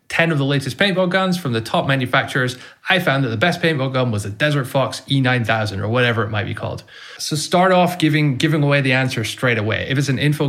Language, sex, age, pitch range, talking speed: English, male, 20-39, 120-155 Hz, 240 wpm